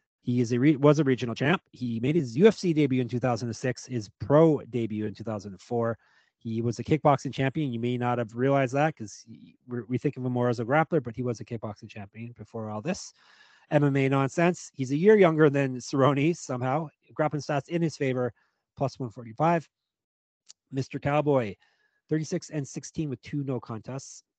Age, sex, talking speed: 30-49, male, 185 wpm